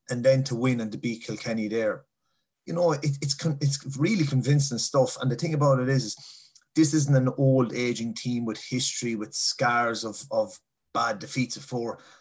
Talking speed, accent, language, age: 195 wpm, Irish, English, 30-49